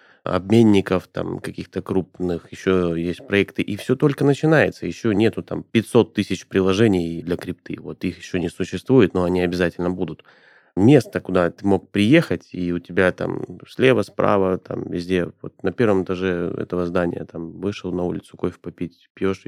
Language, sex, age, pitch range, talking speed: Russian, male, 30-49, 85-100 Hz, 165 wpm